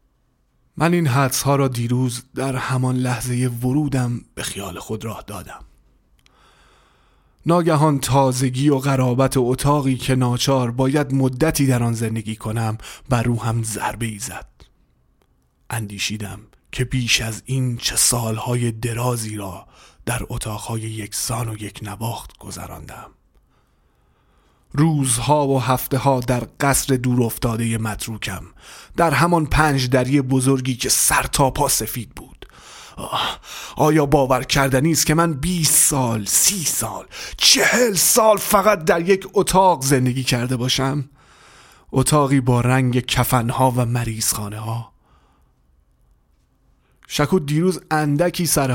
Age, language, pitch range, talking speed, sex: 30-49, Persian, 110-140 Hz, 120 wpm, male